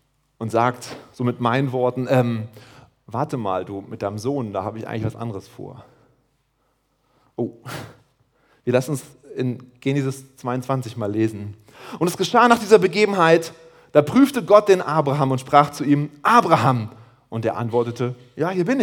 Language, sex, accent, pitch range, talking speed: German, male, German, 120-155 Hz, 165 wpm